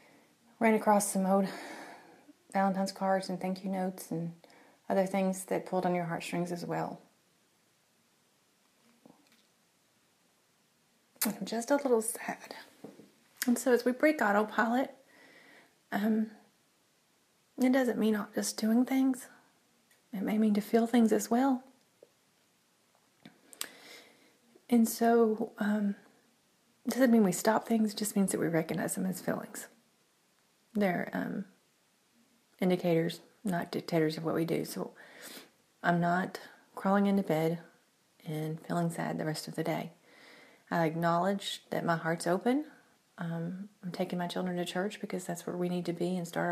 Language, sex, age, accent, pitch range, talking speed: English, female, 30-49, American, 180-235 Hz, 140 wpm